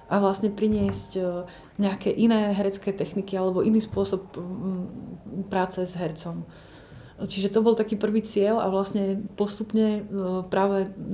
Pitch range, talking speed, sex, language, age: 180-200 Hz, 125 wpm, female, Slovak, 30-49